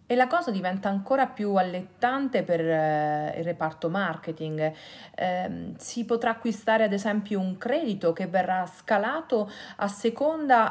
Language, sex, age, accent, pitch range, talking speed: Italian, female, 40-59, native, 170-245 Hz, 140 wpm